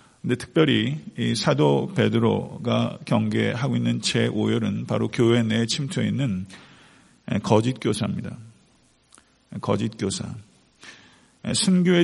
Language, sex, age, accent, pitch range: Korean, male, 50-69, native, 110-130 Hz